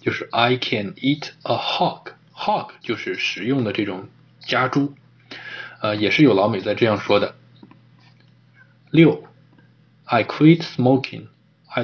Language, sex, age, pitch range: Chinese, male, 20-39, 115-140 Hz